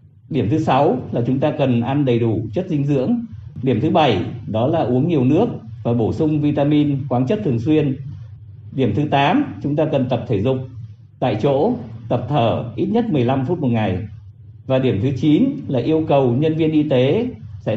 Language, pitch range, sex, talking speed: Vietnamese, 115-145 Hz, male, 205 wpm